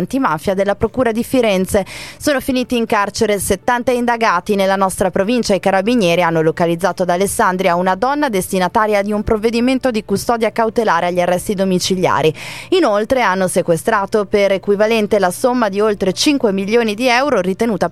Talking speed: 155 wpm